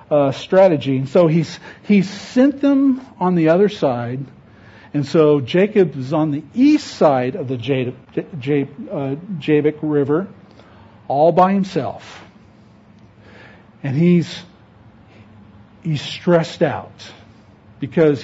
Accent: American